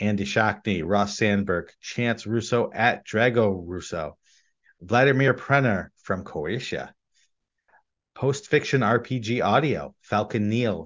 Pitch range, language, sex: 100-125 Hz, English, male